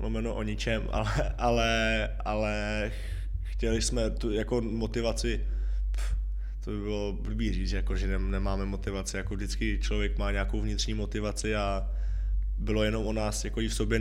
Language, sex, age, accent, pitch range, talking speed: Czech, male, 20-39, native, 95-105 Hz, 160 wpm